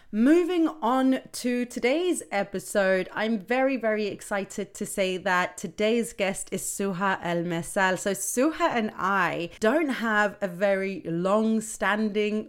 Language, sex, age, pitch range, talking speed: English, female, 30-49, 185-235 Hz, 130 wpm